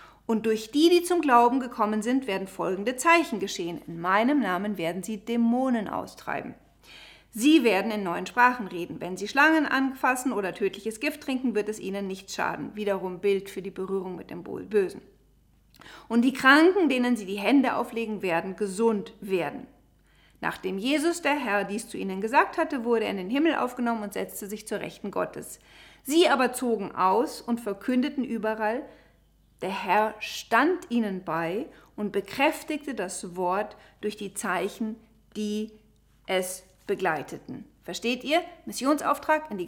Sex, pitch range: female, 200-265 Hz